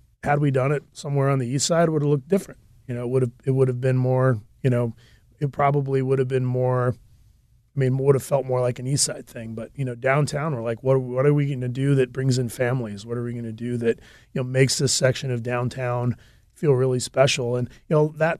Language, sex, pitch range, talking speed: English, male, 120-145 Hz, 270 wpm